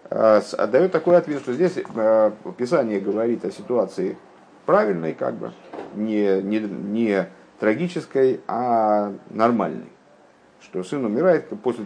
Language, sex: Russian, male